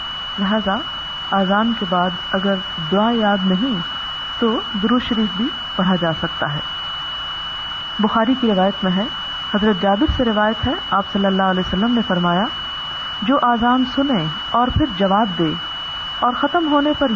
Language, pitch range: Urdu, 185-235 Hz